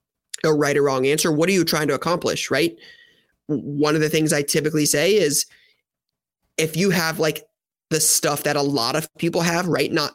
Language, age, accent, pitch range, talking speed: English, 20-39, American, 145-180 Hz, 200 wpm